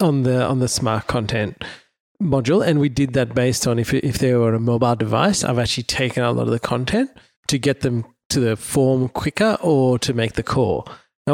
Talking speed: 215 wpm